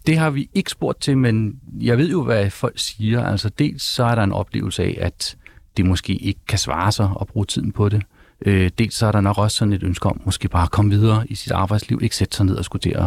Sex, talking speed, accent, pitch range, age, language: male, 260 wpm, native, 100-125 Hz, 40-59, Danish